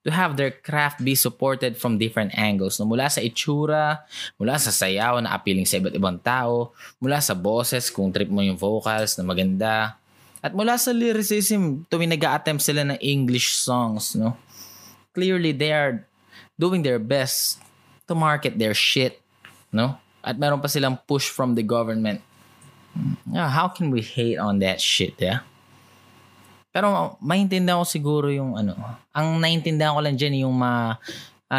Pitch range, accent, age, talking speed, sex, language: 110-150 Hz, native, 20-39, 160 wpm, male, Filipino